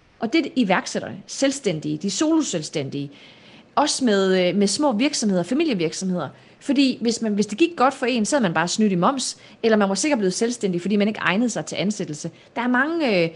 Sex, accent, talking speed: female, native, 200 wpm